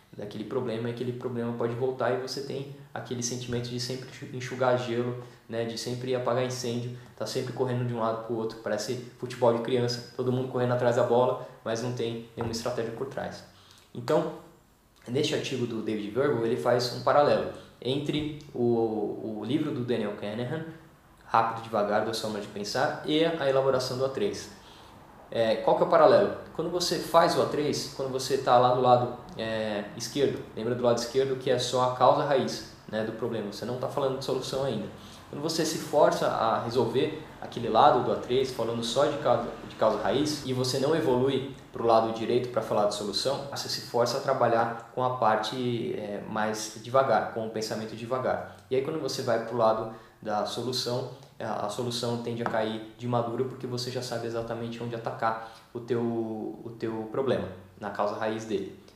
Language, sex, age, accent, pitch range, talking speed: Portuguese, male, 20-39, Brazilian, 110-130 Hz, 195 wpm